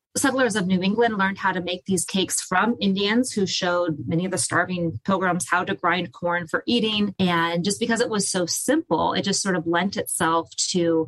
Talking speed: 210 wpm